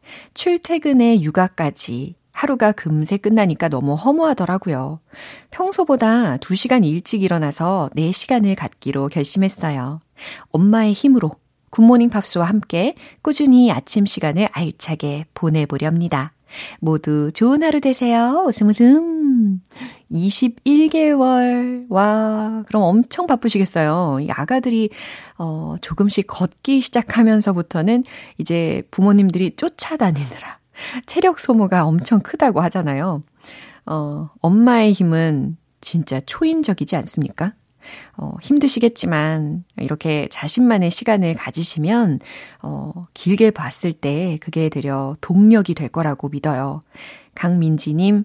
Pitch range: 155-240 Hz